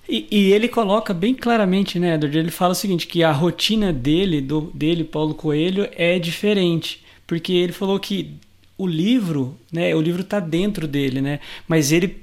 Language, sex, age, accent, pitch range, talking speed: Portuguese, male, 20-39, Brazilian, 160-195 Hz, 180 wpm